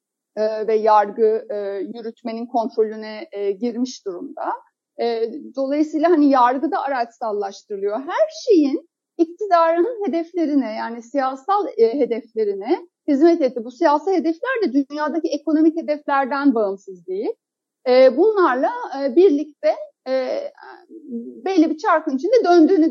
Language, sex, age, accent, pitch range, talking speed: Turkish, female, 60-79, native, 260-335 Hz, 95 wpm